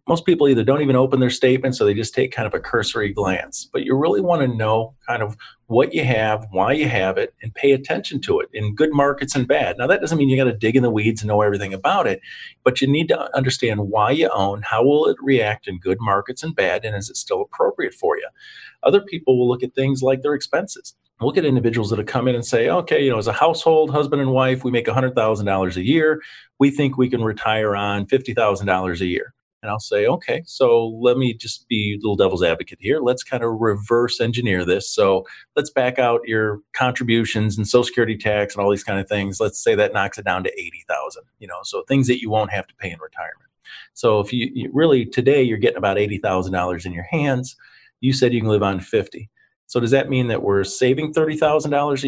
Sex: male